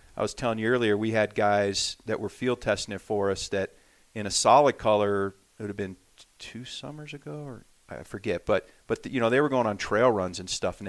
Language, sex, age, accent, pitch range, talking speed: English, male, 40-59, American, 105-125 Hz, 240 wpm